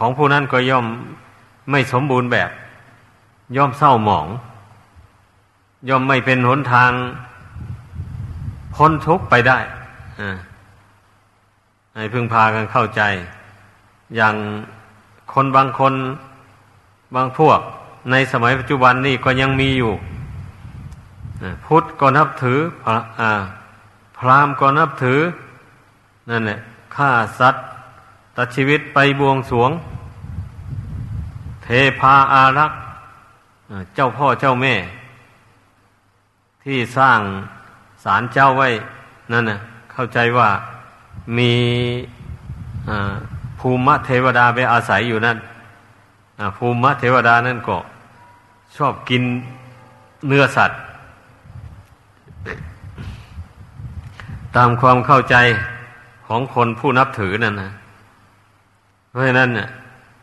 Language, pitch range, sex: Thai, 105-130 Hz, male